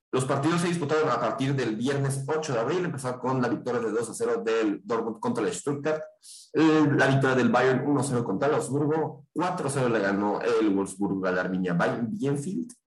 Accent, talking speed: Mexican, 210 wpm